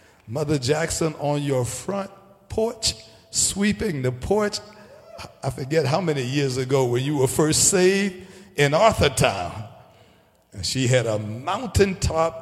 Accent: American